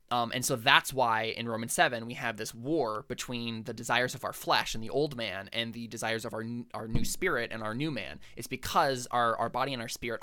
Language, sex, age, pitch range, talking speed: English, male, 20-39, 115-135 Hz, 245 wpm